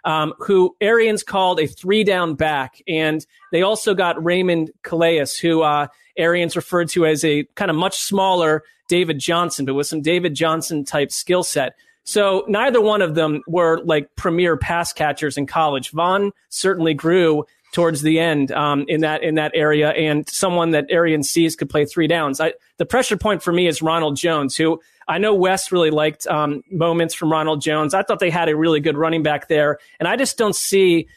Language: English